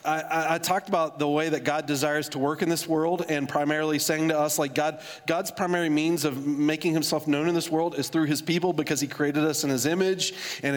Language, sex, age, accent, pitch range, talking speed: English, male, 40-59, American, 160-205 Hz, 240 wpm